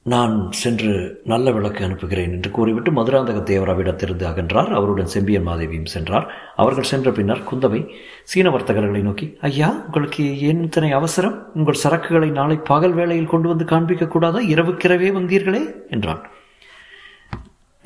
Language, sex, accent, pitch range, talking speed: Tamil, male, native, 150-195 Hz, 120 wpm